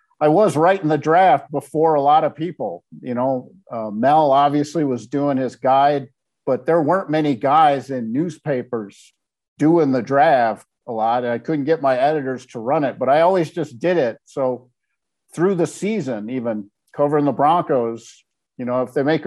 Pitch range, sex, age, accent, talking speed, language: 130-155 Hz, male, 50-69, American, 180 wpm, English